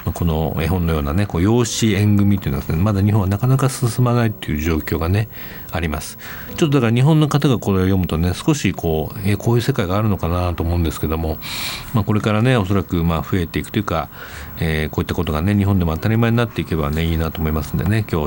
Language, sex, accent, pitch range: Japanese, male, native, 85-120 Hz